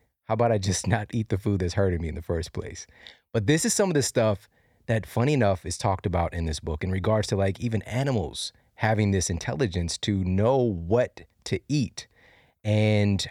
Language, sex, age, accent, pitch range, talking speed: English, male, 30-49, American, 90-120 Hz, 205 wpm